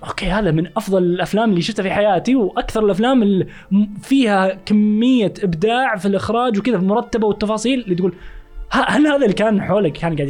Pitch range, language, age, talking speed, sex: 145-190 Hz, Arabic, 20-39, 170 wpm, male